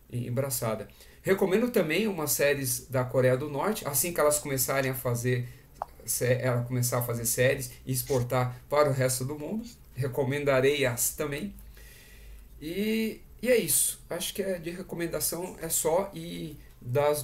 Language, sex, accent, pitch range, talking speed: Portuguese, male, Brazilian, 125-150 Hz, 150 wpm